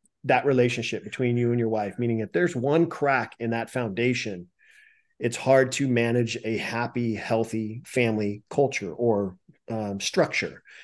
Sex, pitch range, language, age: male, 115-135 Hz, English, 40-59